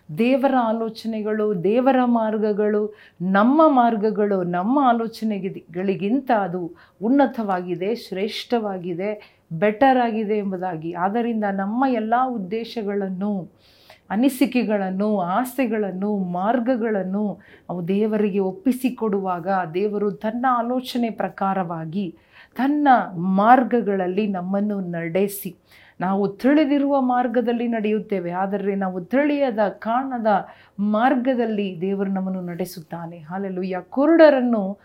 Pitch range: 190-235 Hz